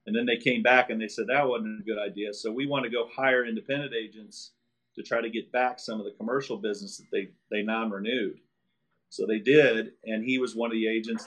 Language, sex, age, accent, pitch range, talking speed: English, male, 40-59, American, 115-135 Hz, 240 wpm